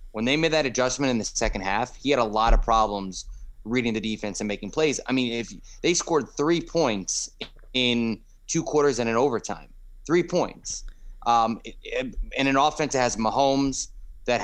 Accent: American